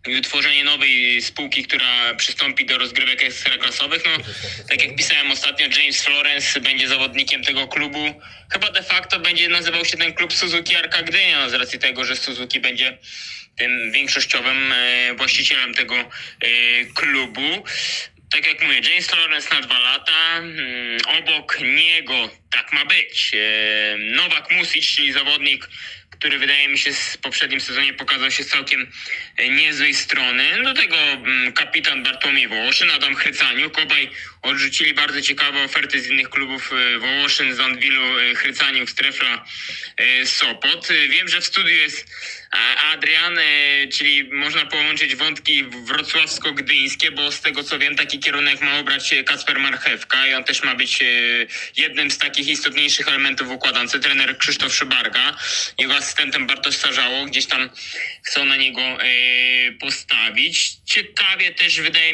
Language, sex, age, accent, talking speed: Polish, male, 20-39, native, 135 wpm